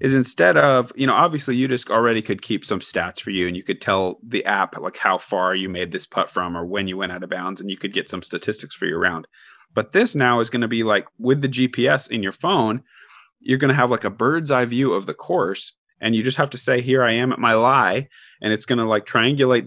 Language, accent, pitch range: English, American, 110-130 Hz